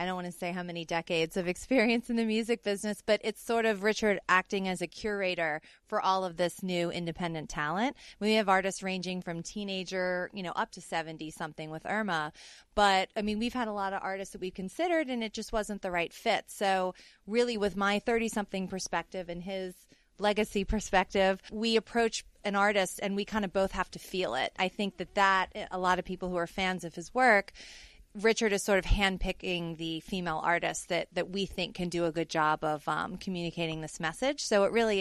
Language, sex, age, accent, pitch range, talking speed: English, female, 30-49, American, 170-205 Hz, 215 wpm